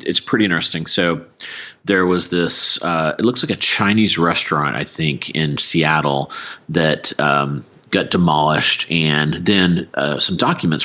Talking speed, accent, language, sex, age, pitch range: 150 wpm, American, English, male, 40-59, 75-85 Hz